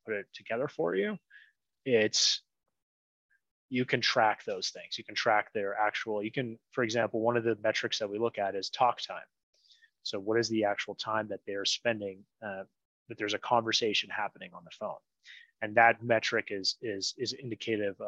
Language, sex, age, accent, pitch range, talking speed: English, male, 30-49, American, 100-125 Hz, 185 wpm